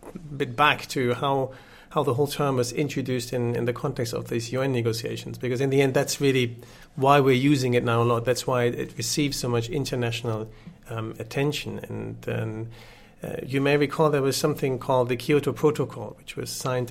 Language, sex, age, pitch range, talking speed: English, male, 40-59, 120-150 Hz, 200 wpm